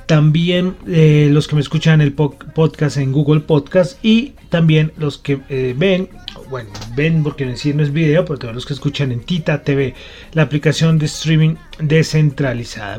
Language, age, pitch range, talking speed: Spanish, 30-49, 130-160 Hz, 170 wpm